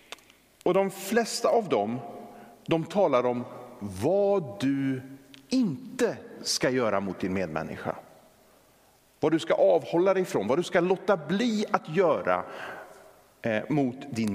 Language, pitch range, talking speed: Swedish, 120-170 Hz, 135 wpm